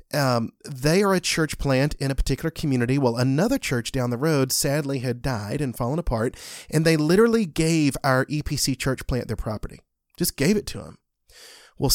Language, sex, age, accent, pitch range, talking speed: English, male, 30-49, American, 125-165 Hz, 190 wpm